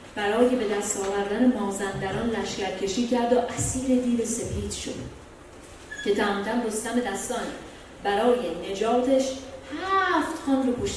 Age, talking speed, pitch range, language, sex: 30-49, 115 wpm, 185-250 Hz, Persian, female